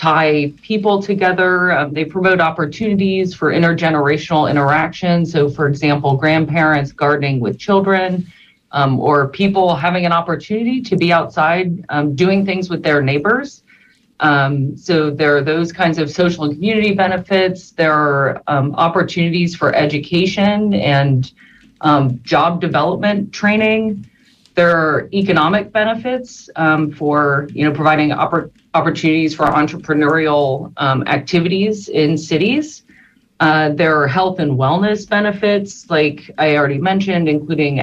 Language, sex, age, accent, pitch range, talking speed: English, female, 30-49, American, 150-190 Hz, 130 wpm